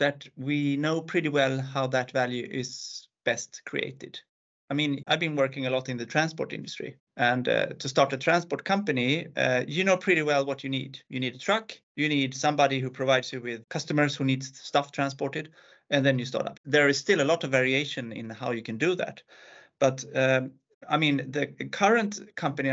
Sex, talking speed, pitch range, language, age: male, 205 wpm, 130-160 Hz, English, 30-49